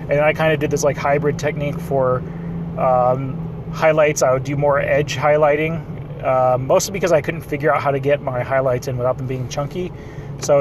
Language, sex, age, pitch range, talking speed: English, male, 30-49, 130-145 Hz, 205 wpm